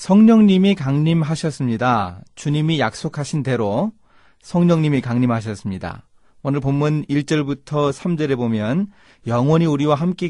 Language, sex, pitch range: Korean, male, 120-170 Hz